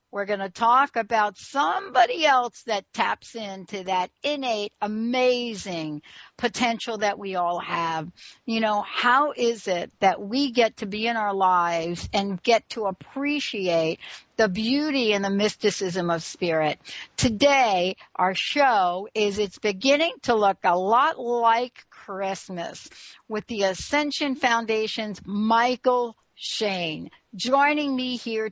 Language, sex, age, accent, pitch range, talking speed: English, female, 60-79, American, 190-245 Hz, 135 wpm